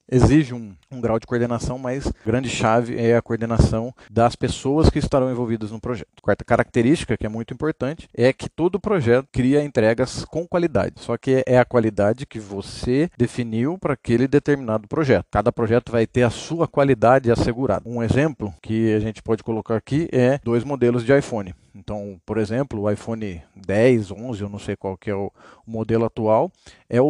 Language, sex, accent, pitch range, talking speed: Portuguese, male, Brazilian, 110-140 Hz, 185 wpm